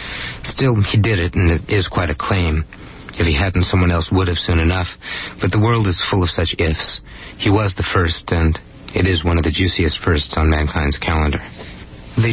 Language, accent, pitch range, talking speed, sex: English, American, 85-100 Hz, 210 wpm, male